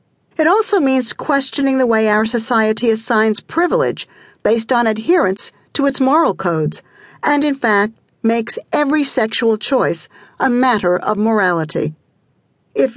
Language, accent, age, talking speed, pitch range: English, American, 50-69, 135 wpm, 210-285 Hz